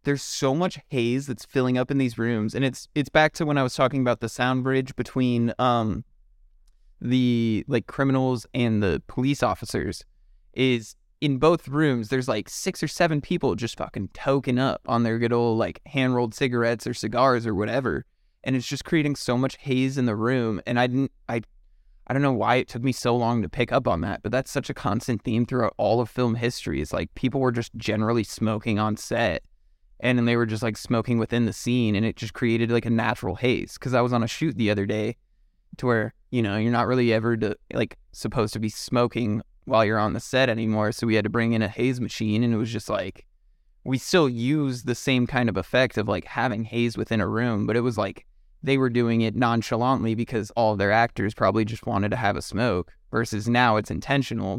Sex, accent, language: male, American, English